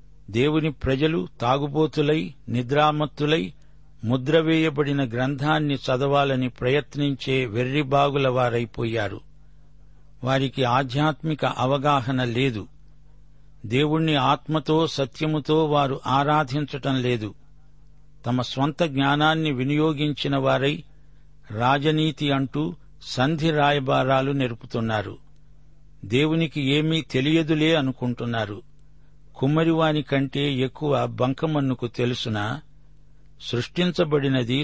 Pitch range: 130-150 Hz